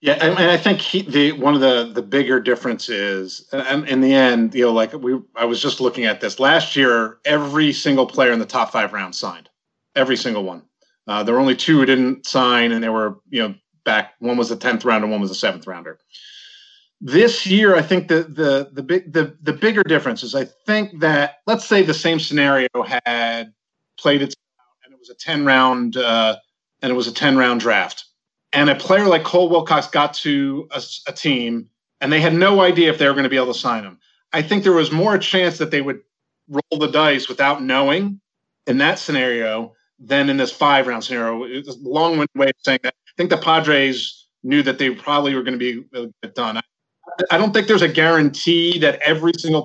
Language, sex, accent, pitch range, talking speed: English, male, American, 125-165 Hz, 220 wpm